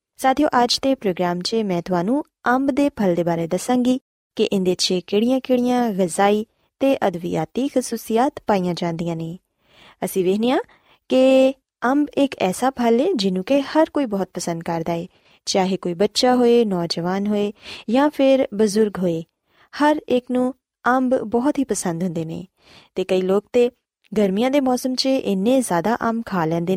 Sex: female